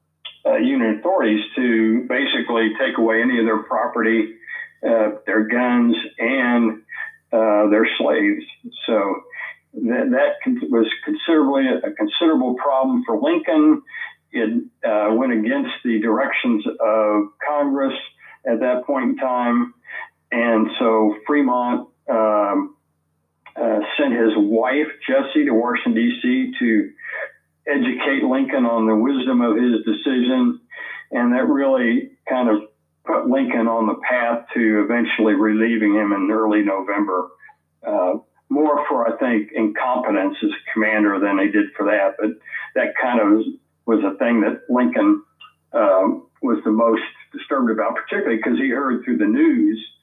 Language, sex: English, male